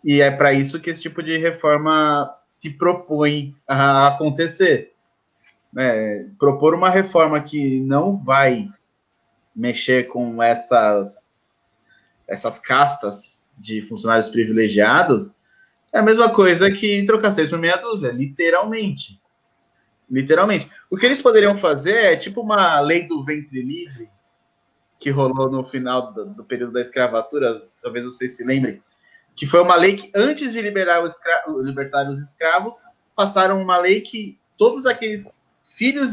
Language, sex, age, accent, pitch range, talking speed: Portuguese, male, 20-39, Brazilian, 140-195 Hz, 140 wpm